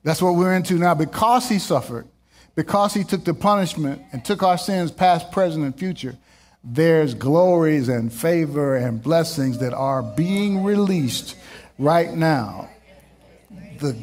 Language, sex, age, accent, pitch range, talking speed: English, male, 50-69, American, 115-170 Hz, 145 wpm